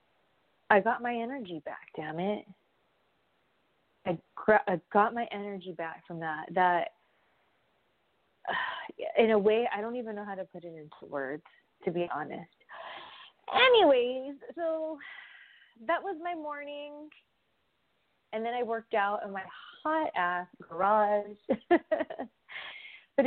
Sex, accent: female, American